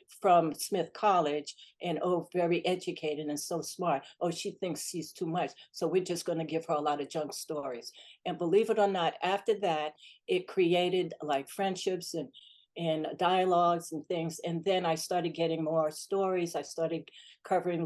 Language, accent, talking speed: English, American, 180 wpm